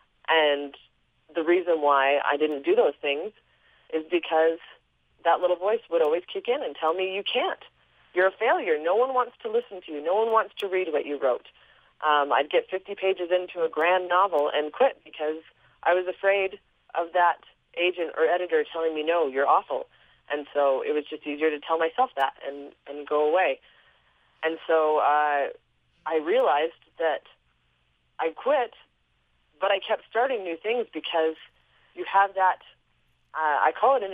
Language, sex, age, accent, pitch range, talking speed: English, female, 30-49, American, 145-200 Hz, 180 wpm